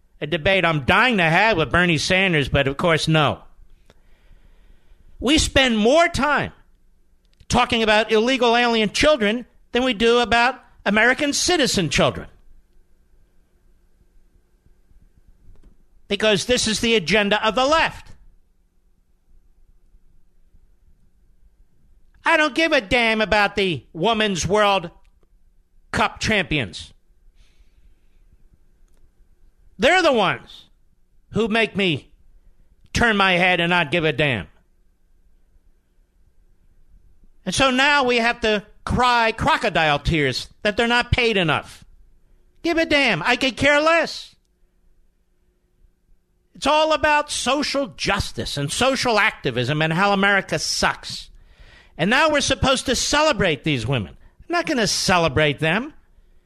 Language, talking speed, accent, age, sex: English, 115 wpm, American, 50-69, male